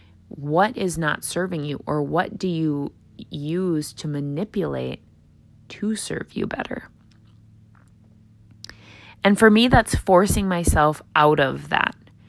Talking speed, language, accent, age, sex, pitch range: 120 wpm, English, American, 20-39, female, 110-160 Hz